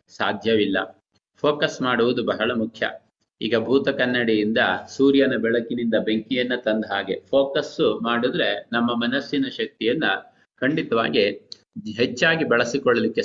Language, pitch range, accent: Kannada, 120-145 Hz, native